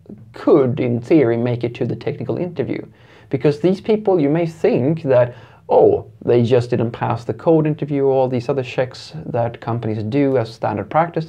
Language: English